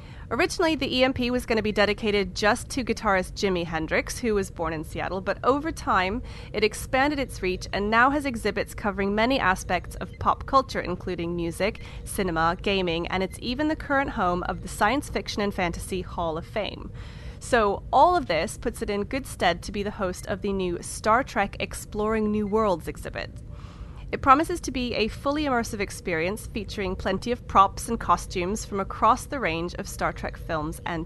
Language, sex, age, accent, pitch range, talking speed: English, female, 30-49, American, 185-270 Hz, 190 wpm